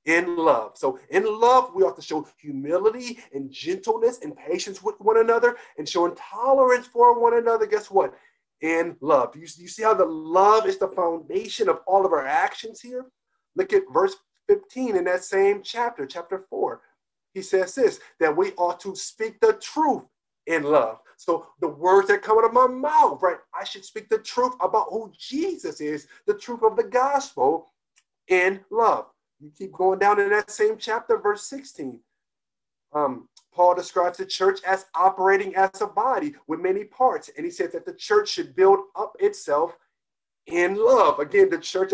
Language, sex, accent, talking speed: English, male, American, 185 wpm